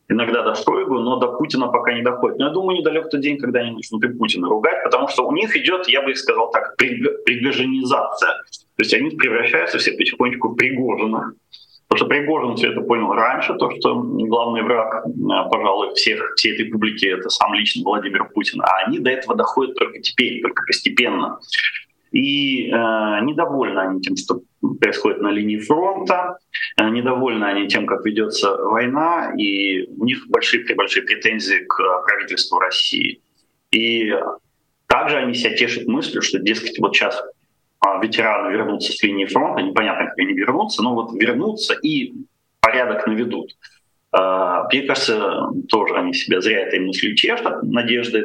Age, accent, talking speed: 30-49, native, 160 wpm